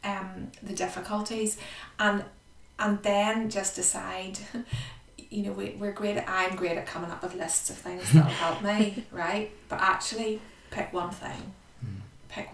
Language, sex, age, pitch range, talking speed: English, female, 30-49, 175-205 Hz, 160 wpm